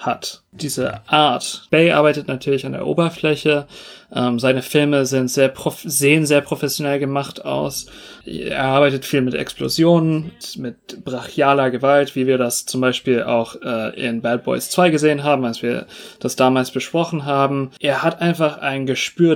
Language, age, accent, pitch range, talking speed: German, 30-49, German, 130-155 Hz, 145 wpm